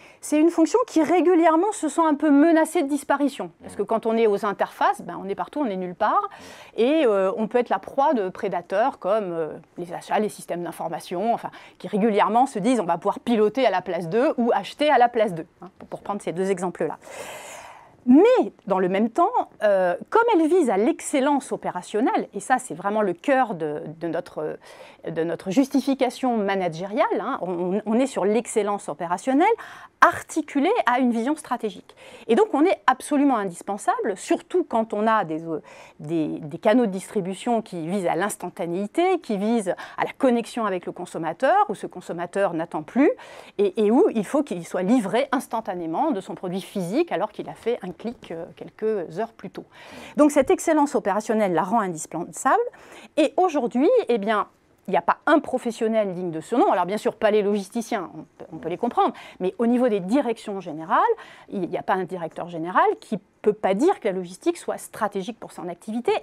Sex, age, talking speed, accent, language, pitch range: female, 30-49, 195 wpm, French, French, 190-285 Hz